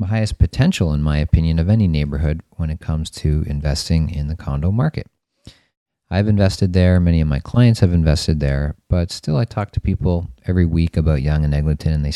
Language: English